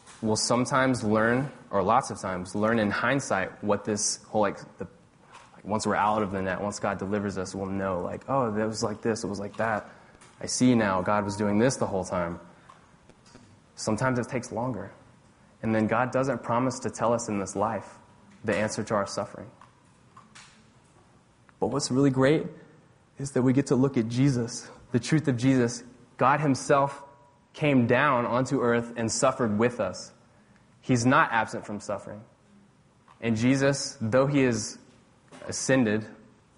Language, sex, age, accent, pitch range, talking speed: English, male, 20-39, American, 105-125 Hz, 175 wpm